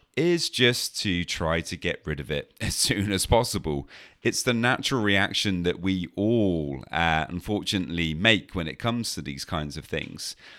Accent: British